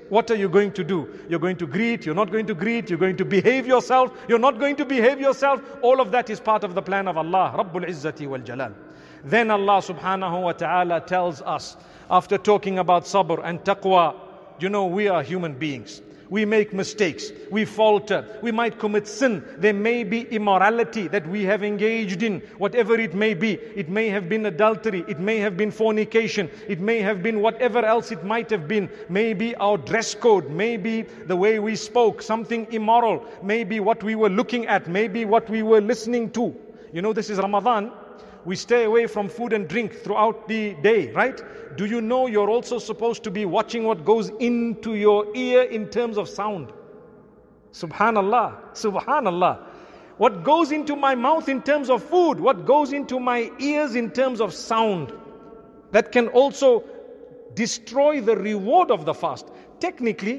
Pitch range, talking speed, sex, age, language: 200-235 Hz, 185 wpm, male, 50-69, English